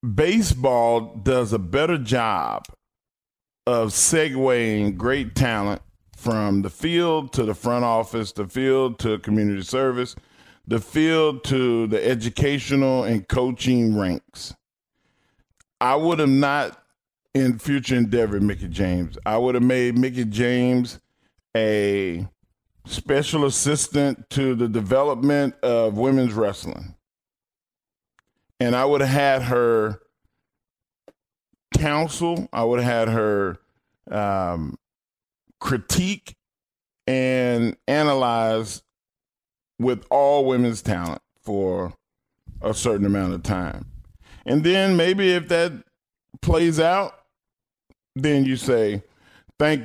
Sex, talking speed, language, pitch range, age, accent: male, 110 wpm, English, 105-135 Hz, 40-59, American